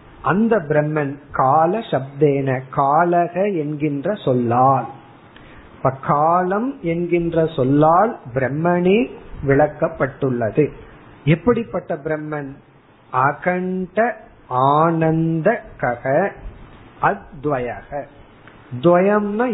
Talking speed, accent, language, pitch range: 50 wpm, native, Tamil, 140-185 Hz